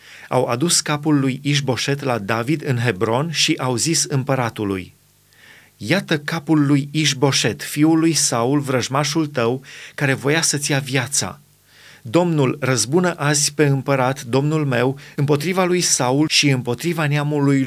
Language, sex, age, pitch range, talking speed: Romanian, male, 30-49, 125-155 Hz, 135 wpm